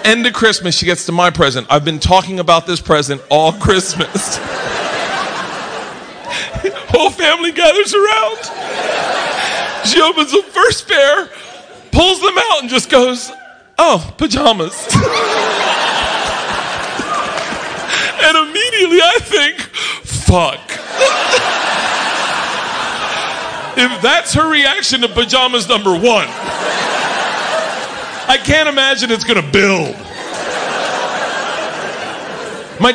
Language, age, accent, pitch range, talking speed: English, 40-59, American, 185-305 Hz, 95 wpm